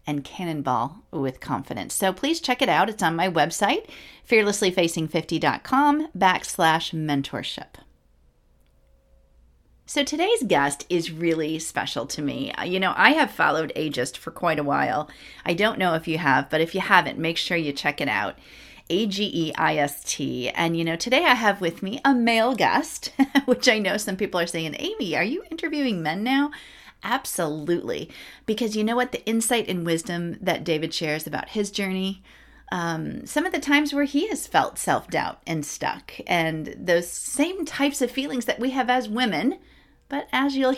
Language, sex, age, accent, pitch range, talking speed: English, female, 40-59, American, 160-245 Hz, 170 wpm